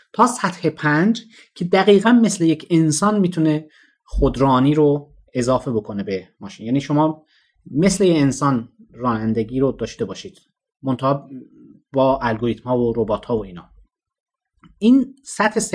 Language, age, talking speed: Persian, 30-49, 135 wpm